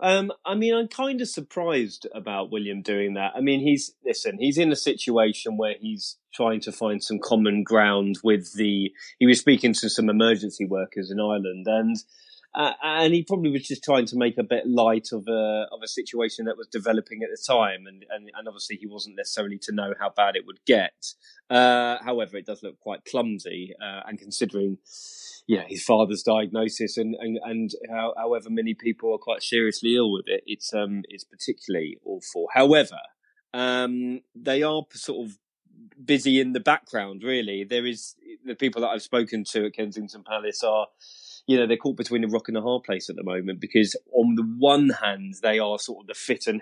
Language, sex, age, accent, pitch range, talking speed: English, male, 20-39, British, 105-125 Hz, 200 wpm